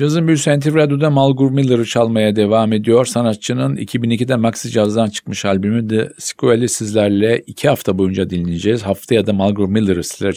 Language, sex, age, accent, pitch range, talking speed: Turkish, male, 50-69, native, 100-120 Hz, 155 wpm